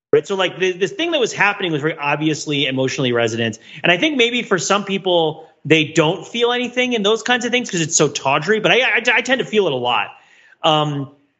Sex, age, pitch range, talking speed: male, 30-49, 140-185 Hz, 230 wpm